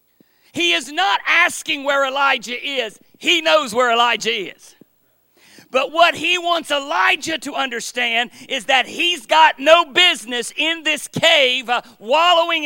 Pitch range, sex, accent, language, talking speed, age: 255-325 Hz, male, American, English, 135 wpm, 40-59